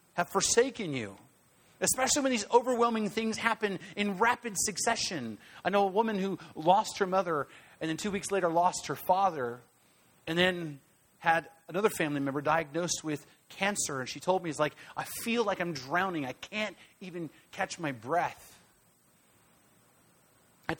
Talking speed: 160 wpm